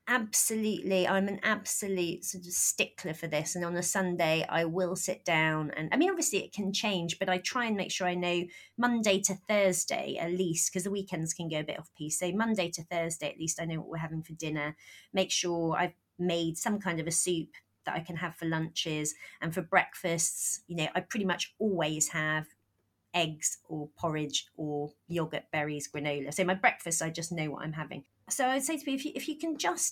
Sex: female